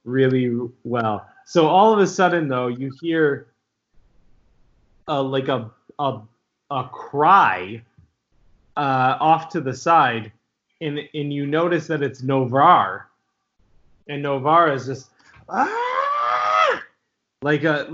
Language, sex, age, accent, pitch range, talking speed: English, male, 20-39, American, 115-155 Hz, 120 wpm